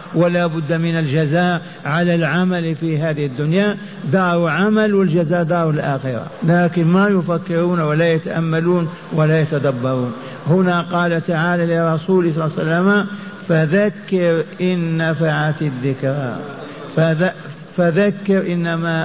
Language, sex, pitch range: Arabic, male, 170-190 Hz